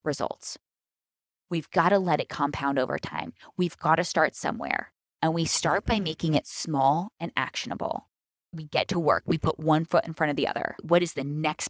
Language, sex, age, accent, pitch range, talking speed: English, female, 10-29, American, 160-220 Hz, 205 wpm